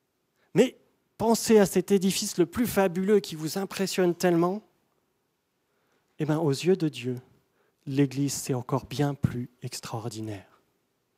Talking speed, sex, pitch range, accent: 130 wpm, male, 135-185 Hz, French